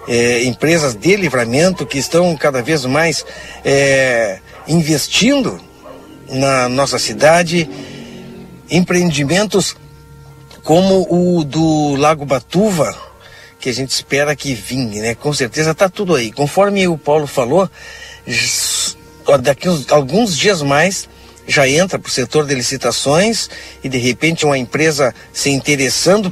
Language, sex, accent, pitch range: Portuguese, male, Brazilian, 130-170 Hz